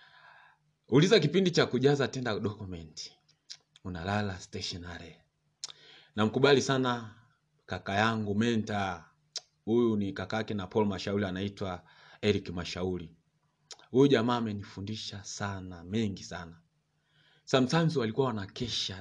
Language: Swahili